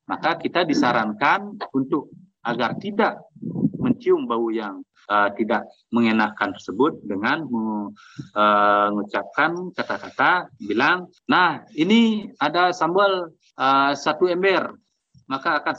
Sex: male